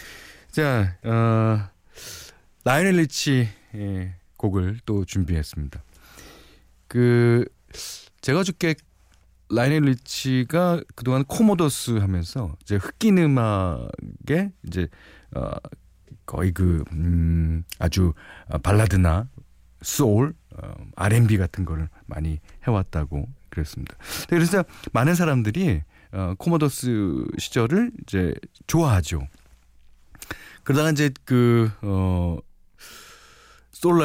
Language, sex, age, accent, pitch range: Korean, male, 40-59, native, 85-140 Hz